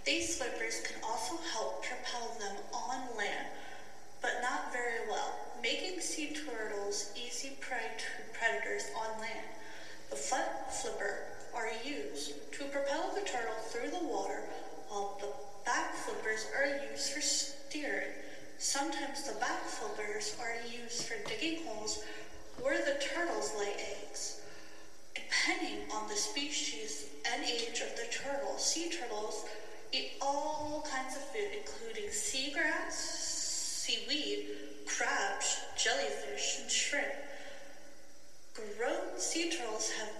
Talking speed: 125 wpm